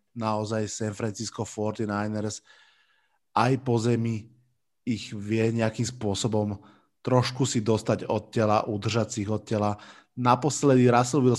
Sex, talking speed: male, 115 wpm